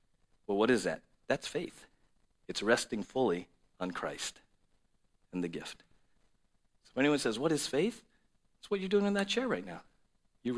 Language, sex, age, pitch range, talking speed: English, male, 50-69, 100-160 Hz, 175 wpm